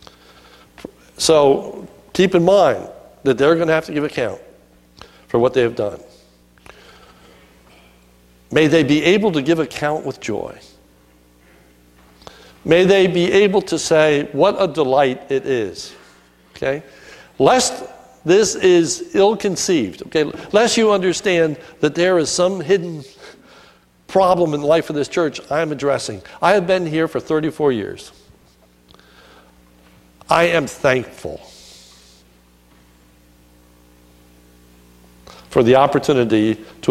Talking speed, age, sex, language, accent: 120 wpm, 60-79, male, English, American